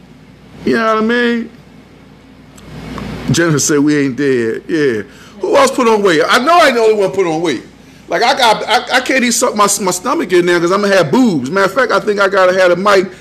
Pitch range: 135-200 Hz